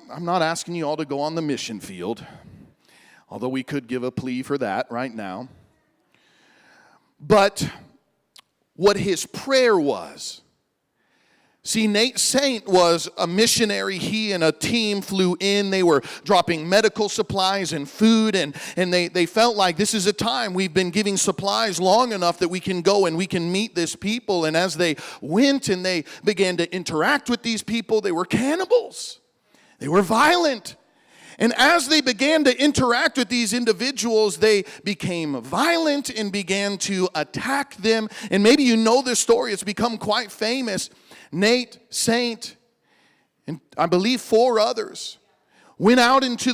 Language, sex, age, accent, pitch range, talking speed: English, male, 40-59, American, 180-235 Hz, 160 wpm